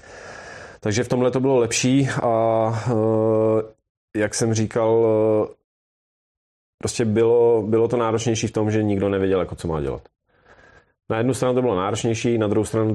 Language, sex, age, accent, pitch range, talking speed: Czech, male, 30-49, native, 85-110 Hz, 155 wpm